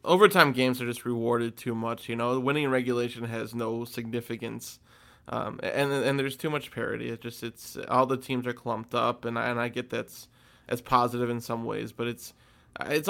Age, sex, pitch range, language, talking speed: 20-39, male, 120-130 Hz, English, 200 wpm